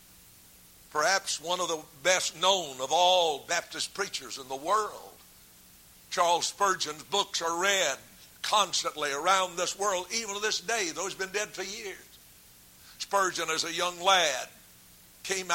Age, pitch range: 60-79, 165-210 Hz